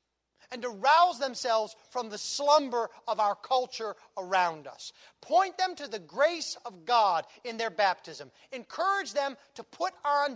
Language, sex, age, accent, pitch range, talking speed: English, male, 40-59, American, 190-255 Hz, 155 wpm